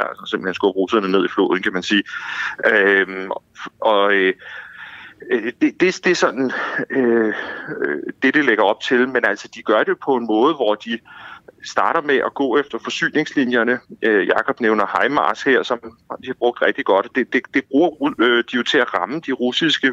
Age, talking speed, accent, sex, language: 30-49, 185 wpm, native, male, Danish